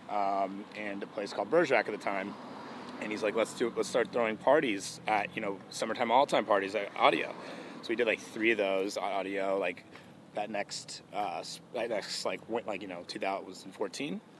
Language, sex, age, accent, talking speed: English, male, 30-49, American, 195 wpm